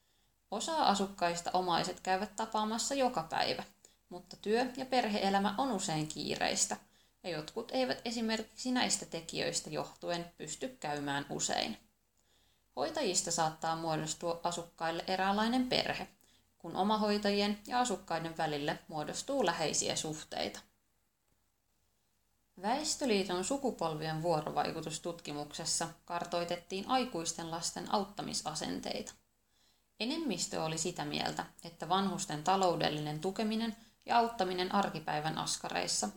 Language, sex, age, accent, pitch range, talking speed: Finnish, female, 20-39, native, 160-215 Hz, 95 wpm